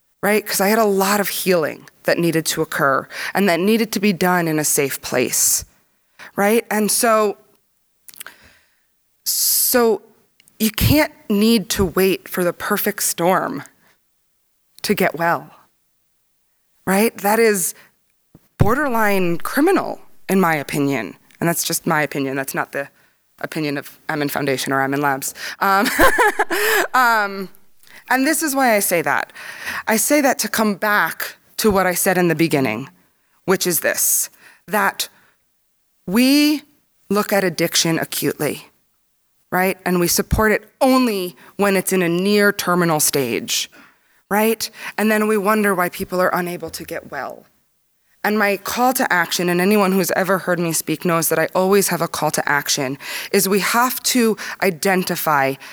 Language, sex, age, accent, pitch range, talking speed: English, female, 20-39, American, 170-215 Hz, 155 wpm